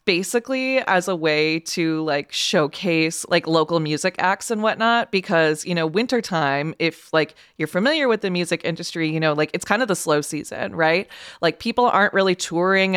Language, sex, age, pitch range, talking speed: English, female, 20-39, 160-200 Hz, 185 wpm